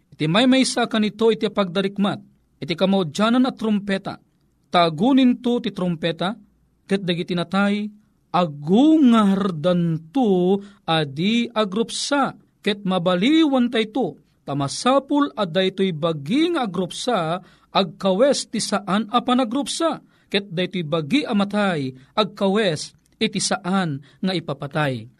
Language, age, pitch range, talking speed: Filipino, 40-59, 175-240 Hz, 105 wpm